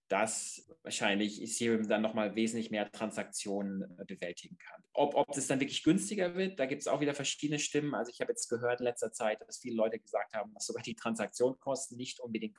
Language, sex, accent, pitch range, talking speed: German, male, German, 110-150 Hz, 205 wpm